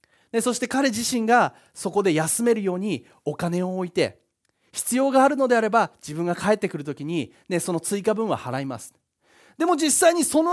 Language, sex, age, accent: Japanese, male, 30-49, native